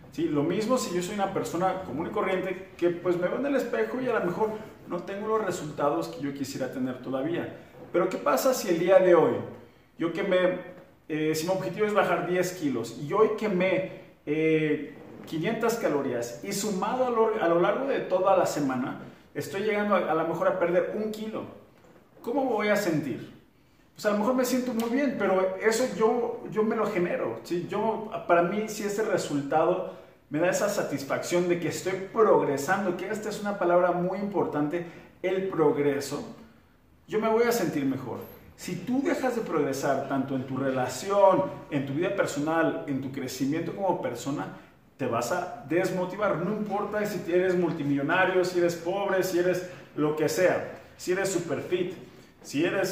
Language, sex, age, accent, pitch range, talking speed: Spanish, male, 40-59, Mexican, 155-205 Hz, 190 wpm